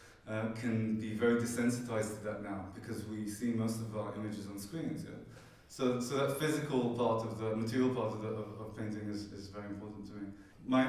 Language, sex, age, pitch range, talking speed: Finnish, male, 20-39, 105-120 Hz, 215 wpm